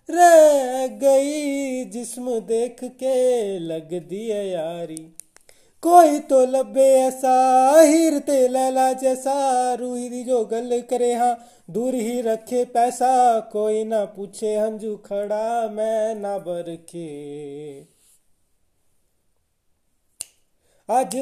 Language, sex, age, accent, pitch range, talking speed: Hindi, male, 20-39, native, 200-260 Hz, 90 wpm